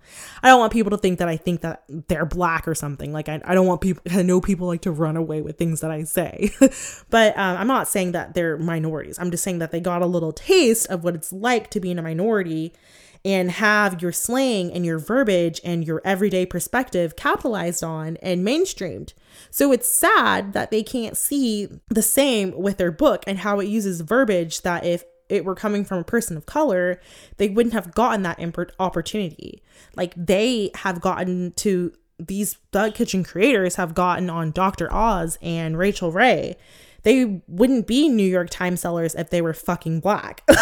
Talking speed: 200 wpm